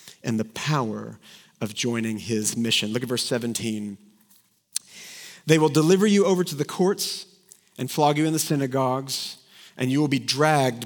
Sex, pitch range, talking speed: male, 120-165 Hz, 165 wpm